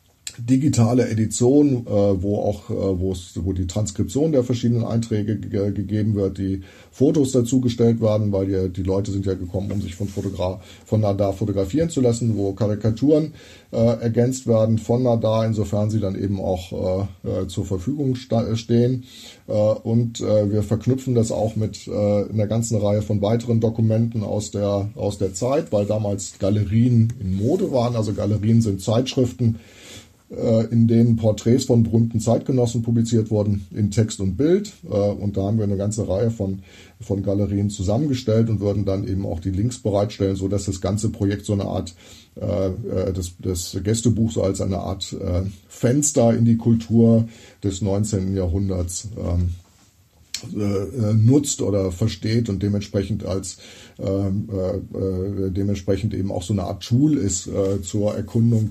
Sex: male